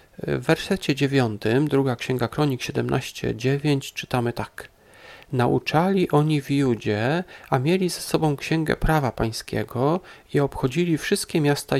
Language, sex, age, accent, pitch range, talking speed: Polish, male, 40-59, native, 130-160 Hz, 120 wpm